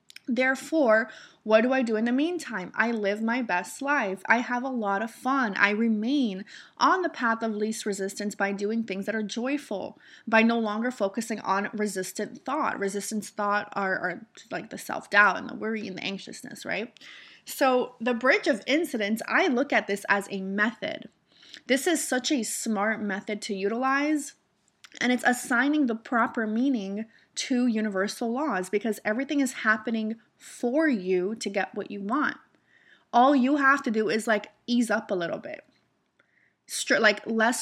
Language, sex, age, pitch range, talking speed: English, female, 20-39, 205-255 Hz, 170 wpm